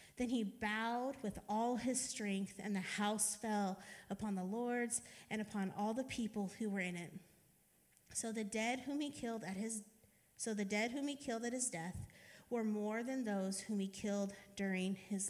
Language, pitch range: English, 205-265 Hz